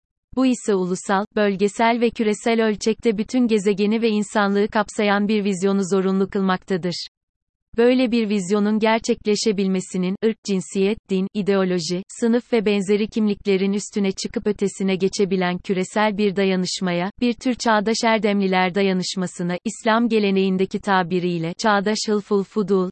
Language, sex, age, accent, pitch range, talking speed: Turkish, female, 30-49, native, 190-220 Hz, 120 wpm